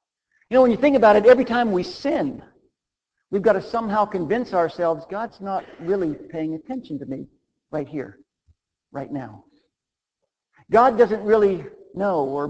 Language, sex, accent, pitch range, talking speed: English, male, American, 150-210 Hz, 160 wpm